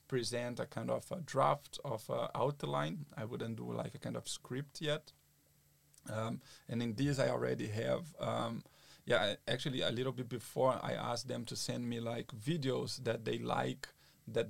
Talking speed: 180 wpm